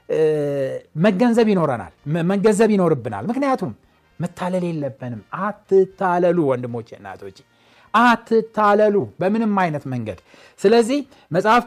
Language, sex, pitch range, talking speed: Amharic, male, 135-210 Hz, 85 wpm